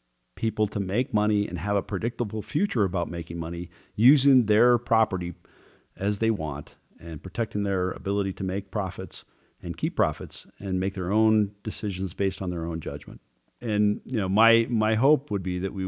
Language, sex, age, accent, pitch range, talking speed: English, male, 40-59, American, 95-125 Hz, 180 wpm